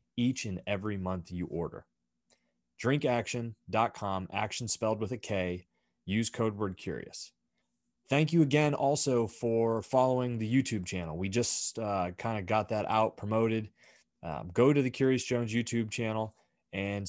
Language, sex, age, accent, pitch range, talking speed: English, male, 30-49, American, 95-115 Hz, 150 wpm